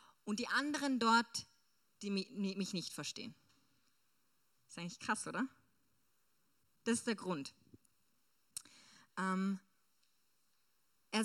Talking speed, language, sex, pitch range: 95 wpm, German, female, 180-225 Hz